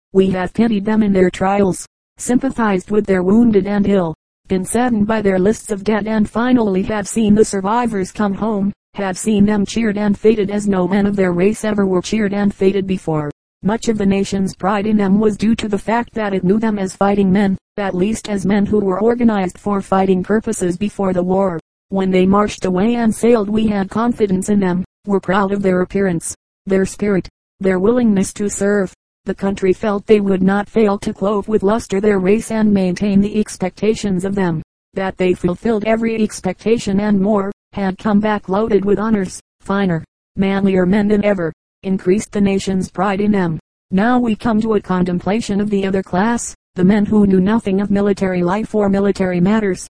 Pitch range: 190-215 Hz